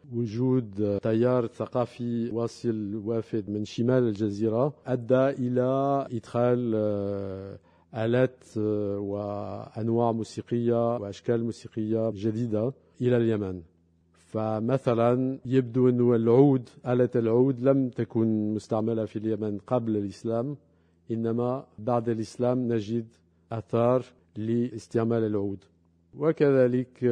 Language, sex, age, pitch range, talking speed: Arabic, male, 50-69, 110-125 Hz, 90 wpm